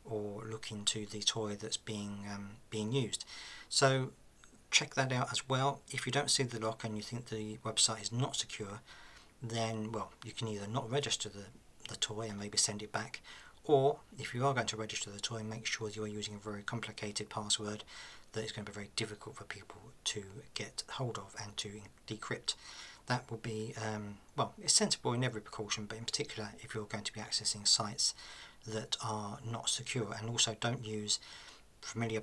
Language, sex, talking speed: English, male, 200 wpm